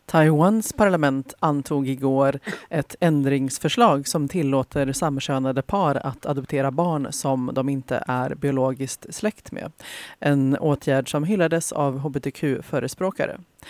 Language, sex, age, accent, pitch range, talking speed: Swedish, female, 30-49, native, 135-155 Hz, 115 wpm